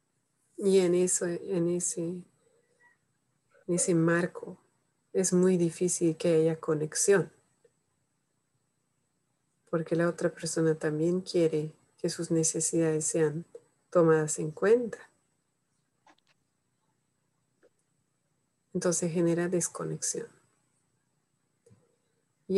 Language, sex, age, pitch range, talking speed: Spanish, female, 30-49, 155-175 Hz, 80 wpm